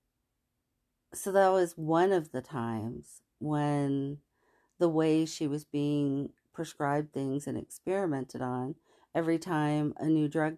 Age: 40-59